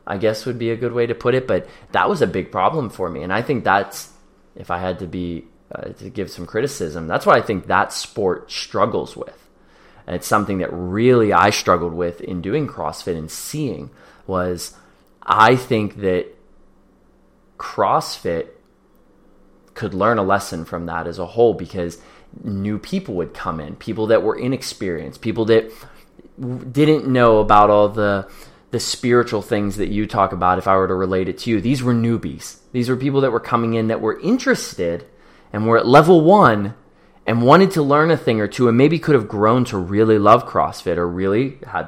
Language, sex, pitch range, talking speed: English, male, 95-125 Hz, 195 wpm